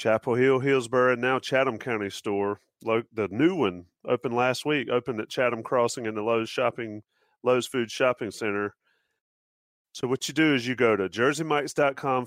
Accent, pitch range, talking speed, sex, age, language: American, 105-125 Hz, 170 wpm, male, 30-49, English